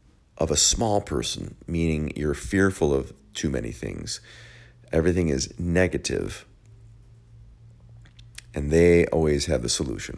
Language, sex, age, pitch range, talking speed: English, male, 50-69, 70-90 Hz, 120 wpm